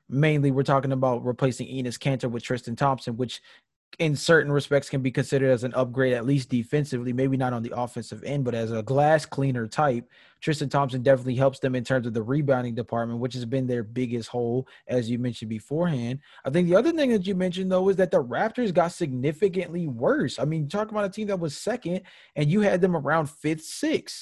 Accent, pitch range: American, 135-190 Hz